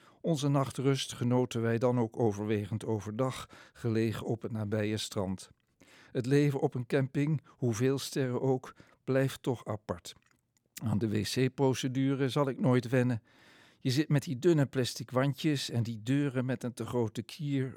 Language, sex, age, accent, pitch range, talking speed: Dutch, male, 50-69, Dutch, 110-140 Hz, 155 wpm